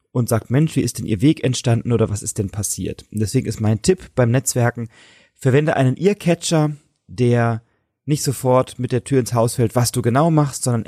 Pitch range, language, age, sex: 105-130 Hz, German, 30-49, male